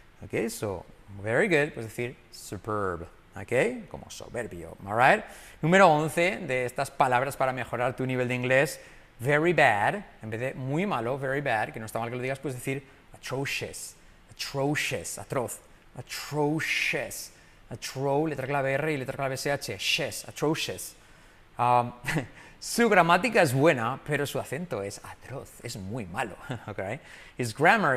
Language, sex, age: Spanish, male, 30-49